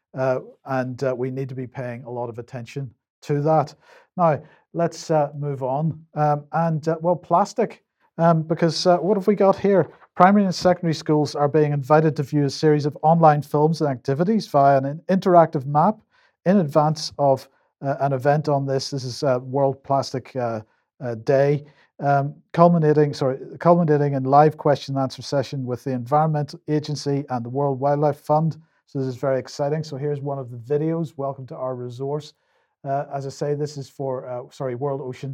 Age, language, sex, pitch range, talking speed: 50-69, English, male, 135-165 Hz, 190 wpm